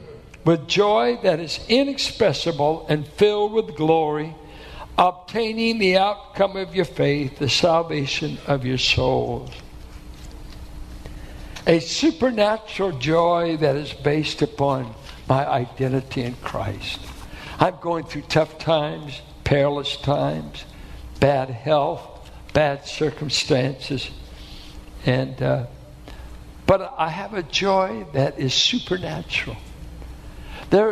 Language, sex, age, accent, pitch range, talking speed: English, male, 60-79, American, 130-170 Hz, 105 wpm